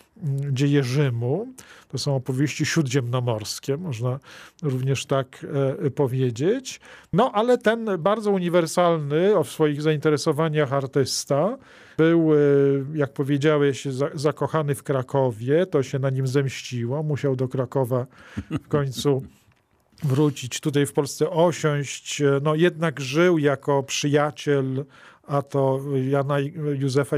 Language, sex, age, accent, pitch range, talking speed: Polish, male, 40-59, native, 135-155 Hz, 110 wpm